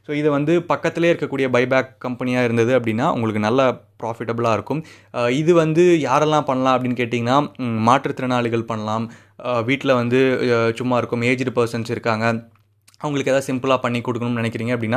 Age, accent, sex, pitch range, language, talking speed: 20-39, native, male, 115-135 Hz, Tamil, 135 wpm